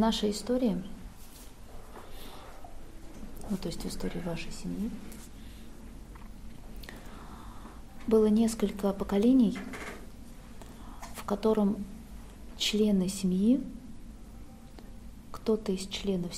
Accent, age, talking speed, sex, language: native, 20-39, 75 wpm, female, Russian